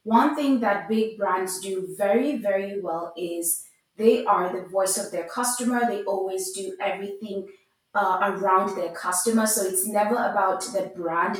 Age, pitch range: 20-39, 185-225 Hz